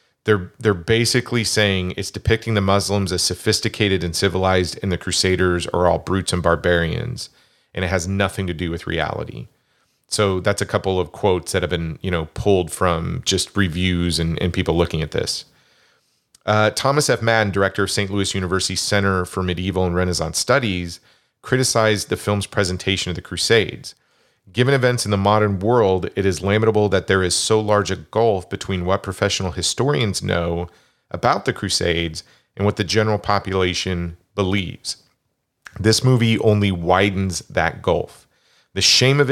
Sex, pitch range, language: male, 90-110 Hz, English